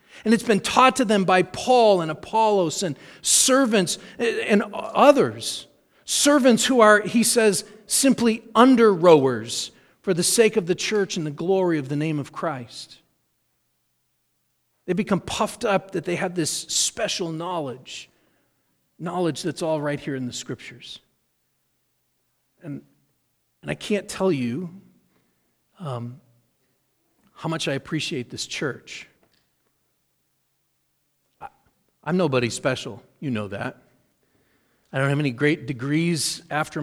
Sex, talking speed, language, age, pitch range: male, 130 wpm, English, 40-59, 130-185 Hz